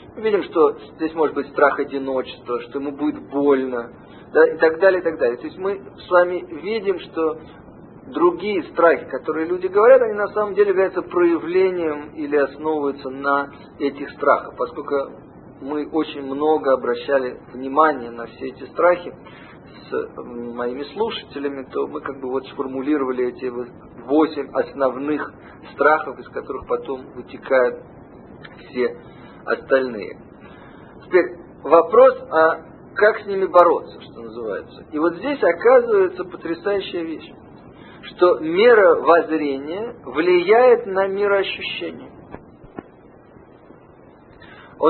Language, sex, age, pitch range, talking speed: Russian, male, 40-59, 140-230 Hz, 120 wpm